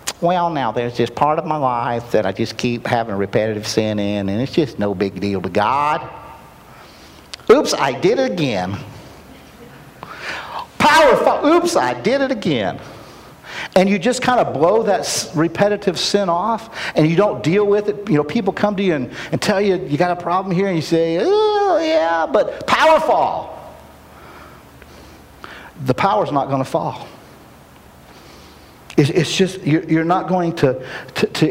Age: 50-69